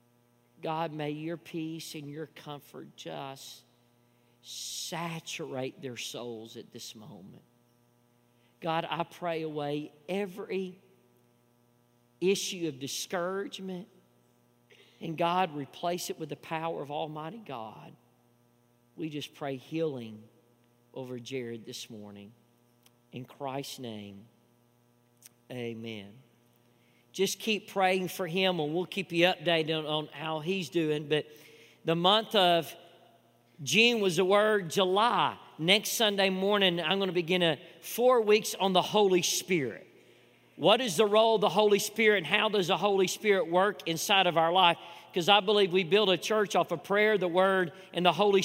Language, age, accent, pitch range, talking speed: English, 40-59, American, 120-190 Hz, 140 wpm